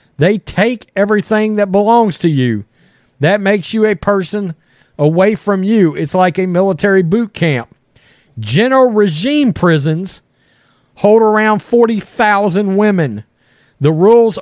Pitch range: 160-210 Hz